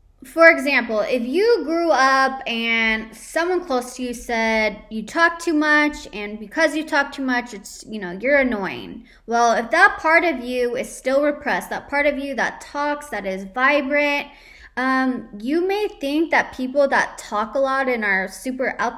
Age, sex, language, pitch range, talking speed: 20-39, female, English, 220-285 Hz, 185 wpm